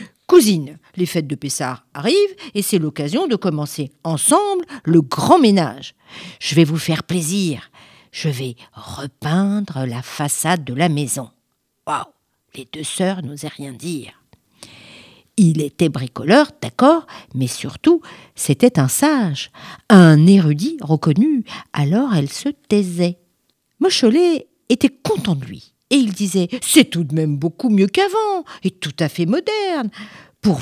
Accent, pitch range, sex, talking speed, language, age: French, 150-225 Hz, female, 140 wpm, French, 50-69